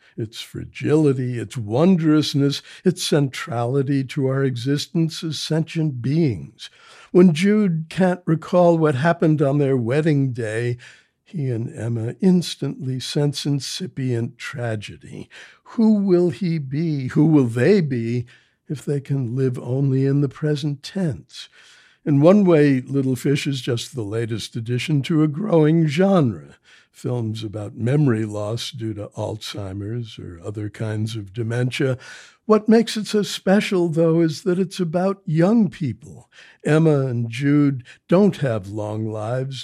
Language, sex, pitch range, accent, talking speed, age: English, male, 120-160 Hz, American, 140 wpm, 60-79